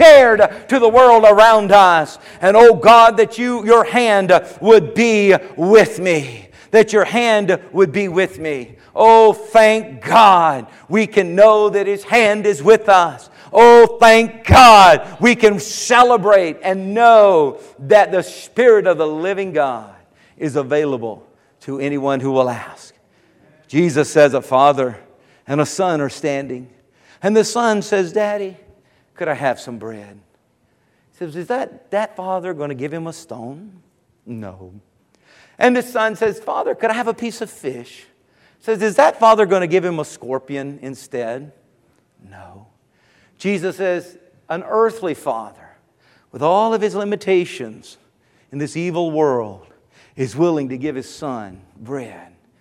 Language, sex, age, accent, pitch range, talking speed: English, male, 50-69, American, 140-220 Hz, 155 wpm